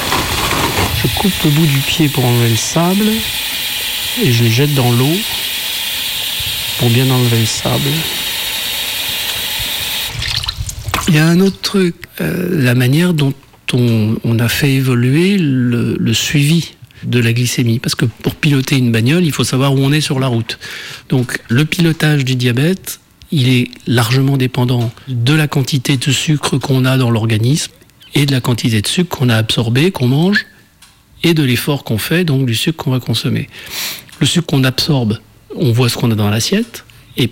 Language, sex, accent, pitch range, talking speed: French, male, French, 120-150 Hz, 175 wpm